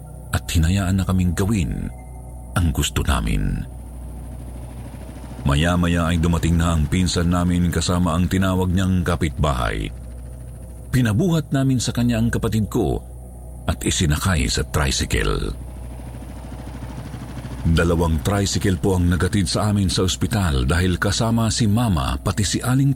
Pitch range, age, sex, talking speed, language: 80-115 Hz, 50-69, male, 125 wpm, Filipino